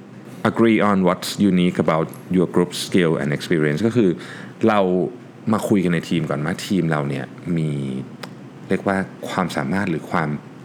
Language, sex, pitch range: Thai, male, 80-105 Hz